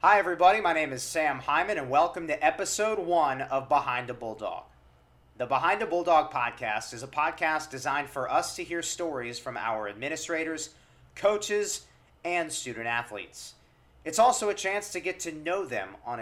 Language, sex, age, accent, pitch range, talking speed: English, male, 40-59, American, 120-165 Hz, 170 wpm